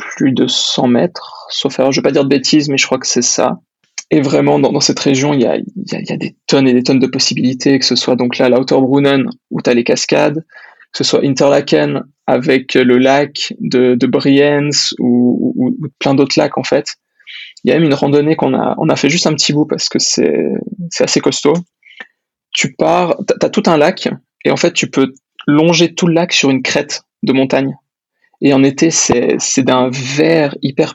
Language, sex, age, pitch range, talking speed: French, male, 20-39, 135-165 Hz, 225 wpm